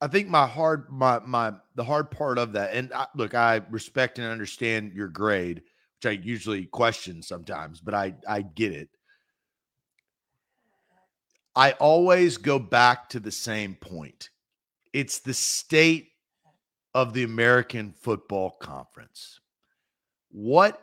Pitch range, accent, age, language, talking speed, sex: 115-145 Hz, American, 40-59, English, 135 wpm, male